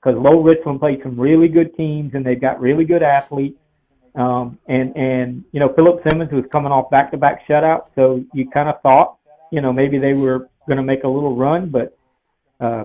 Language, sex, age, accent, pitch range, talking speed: English, male, 50-69, American, 130-160 Hz, 205 wpm